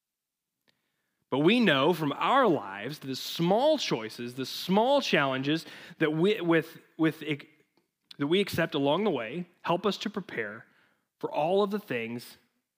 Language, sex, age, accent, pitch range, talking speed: English, male, 30-49, American, 125-170 Hz, 145 wpm